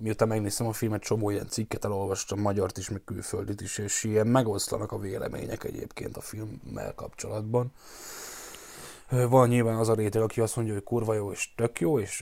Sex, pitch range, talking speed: male, 105-120 Hz, 180 wpm